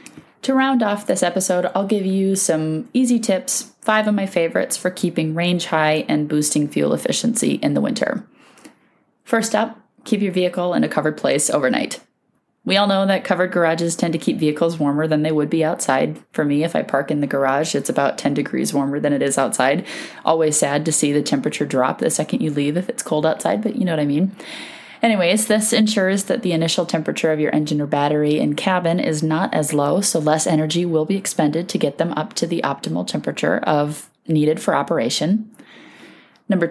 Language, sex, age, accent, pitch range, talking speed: English, female, 30-49, American, 155-200 Hz, 210 wpm